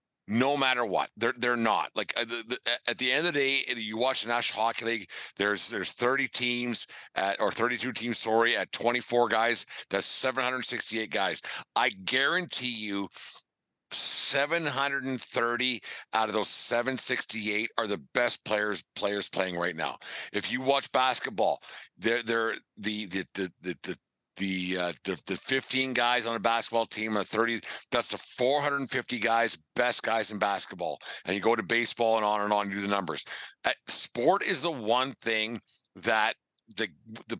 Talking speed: 170 wpm